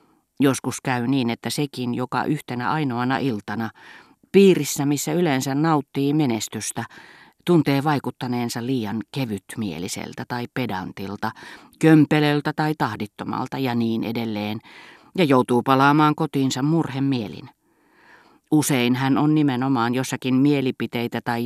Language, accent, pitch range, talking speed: Finnish, native, 115-150 Hz, 105 wpm